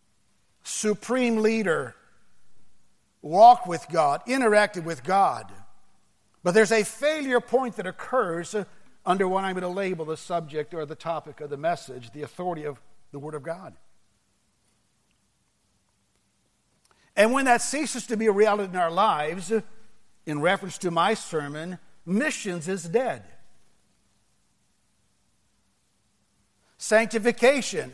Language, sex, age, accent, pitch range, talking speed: English, male, 60-79, American, 160-220 Hz, 120 wpm